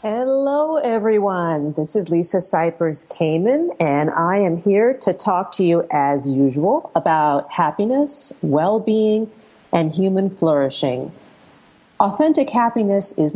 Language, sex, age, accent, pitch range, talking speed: English, female, 40-59, American, 160-210 Hz, 110 wpm